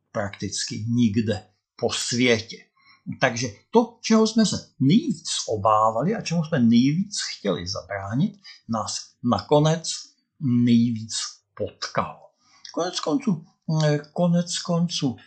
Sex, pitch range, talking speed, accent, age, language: male, 110-145 Hz, 95 wpm, native, 60-79, Czech